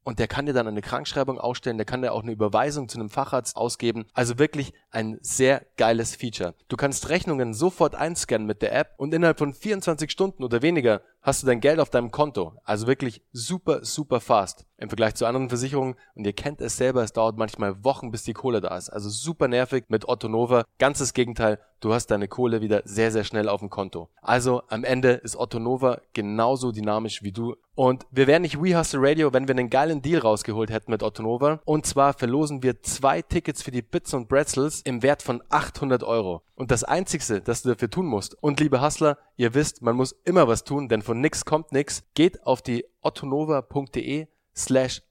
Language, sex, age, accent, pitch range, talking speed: German, male, 20-39, German, 115-145 Hz, 210 wpm